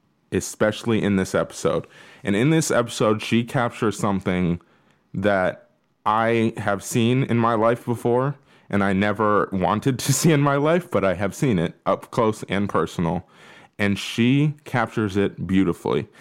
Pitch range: 95-120 Hz